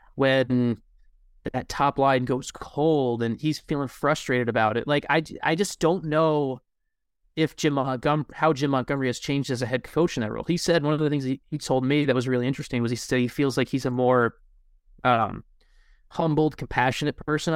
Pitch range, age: 125-155 Hz, 30-49